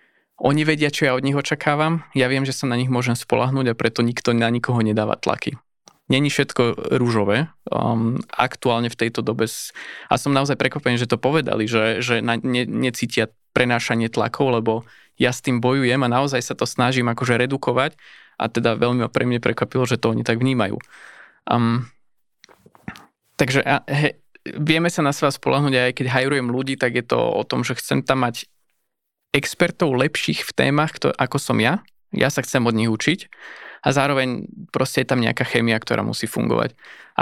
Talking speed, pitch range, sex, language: 180 wpm, 115-135 Hz, male, Slovak